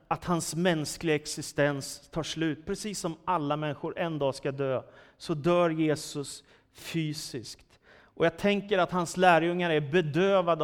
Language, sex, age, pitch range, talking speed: Swedish, male, 30-49, 145-180 Hz, 145 wpm